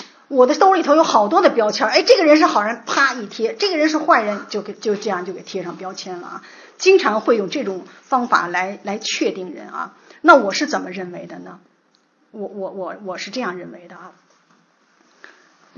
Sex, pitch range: female, 195-300 Hz